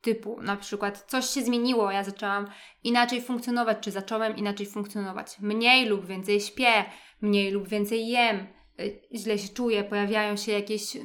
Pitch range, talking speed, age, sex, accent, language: 210-260 Hz, 150 wpm, 20-39, female, native, Polish